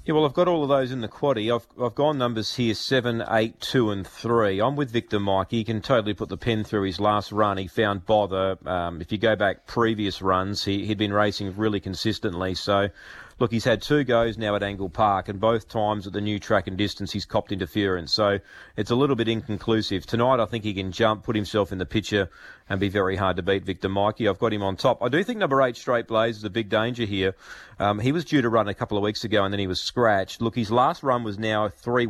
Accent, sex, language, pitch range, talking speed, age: Australian, male, English, 100-125 Hz, 255 wpm, 40-59